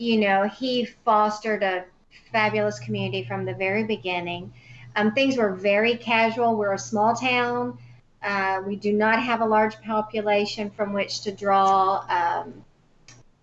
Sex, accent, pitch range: female, American, 190-230 Hz